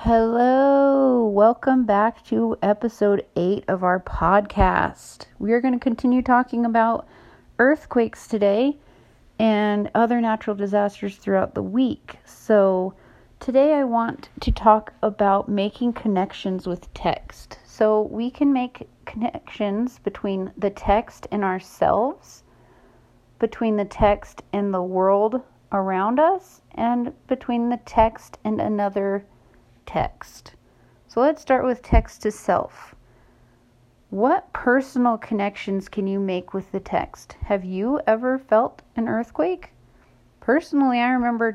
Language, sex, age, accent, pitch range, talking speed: English, female, 40-59, American, 195-240 Hz, 125 wpm